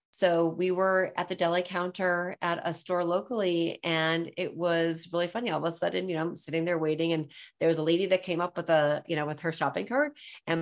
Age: 30-49